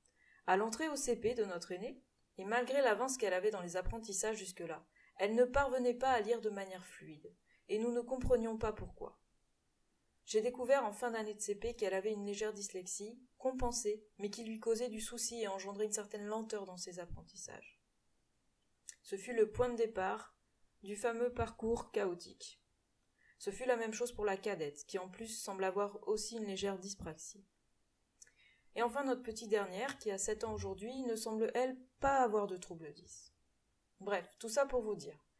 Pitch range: 195-235 Hz